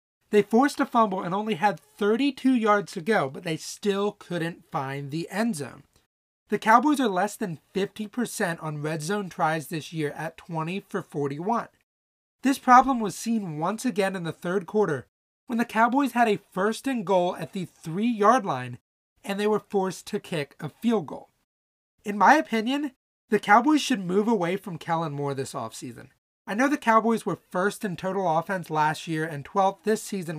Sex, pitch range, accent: male, 160-230 Hz, American